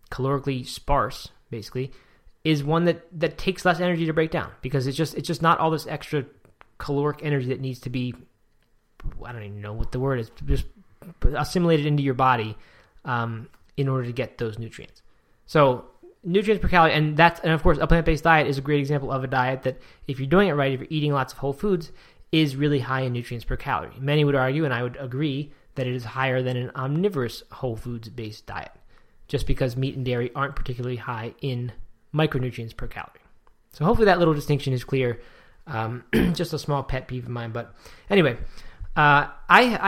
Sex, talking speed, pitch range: male, 200 wpm, 125-160 Hz